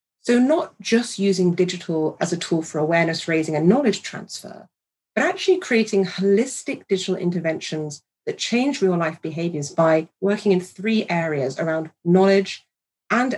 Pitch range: 170-215 Hz